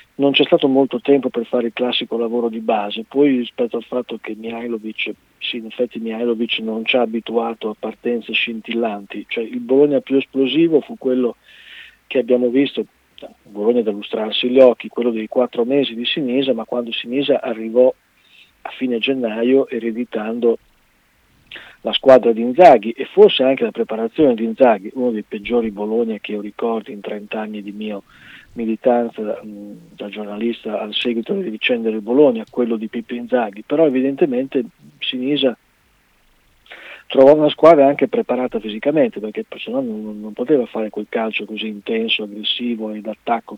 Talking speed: 160 wpm